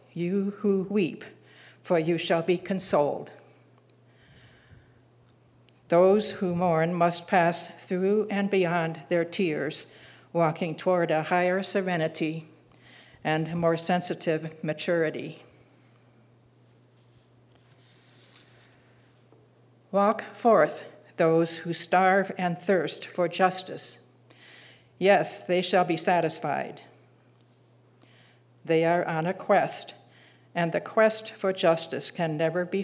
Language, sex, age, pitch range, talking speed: English, female, 60-79, 135-190 Hz, 100 wpm